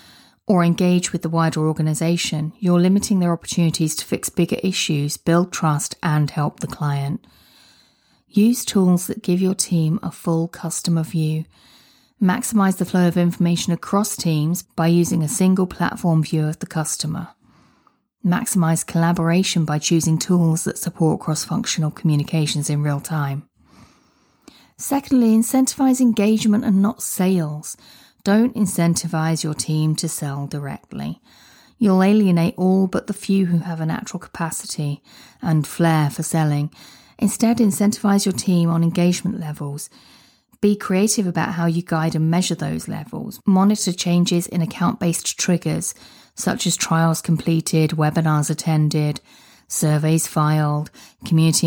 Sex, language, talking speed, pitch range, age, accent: female, English, 135 wpm, 160-190 Hz, 30-49, British